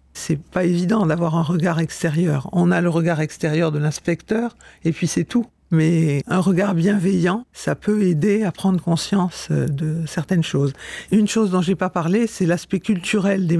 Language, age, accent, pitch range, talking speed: French, 50-69, French, 170-200 Hz, 180 wpm